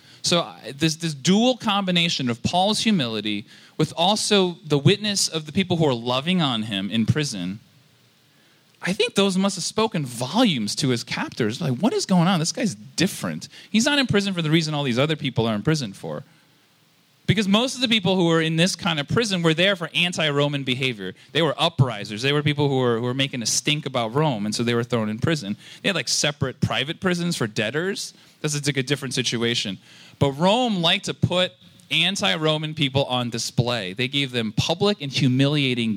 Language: English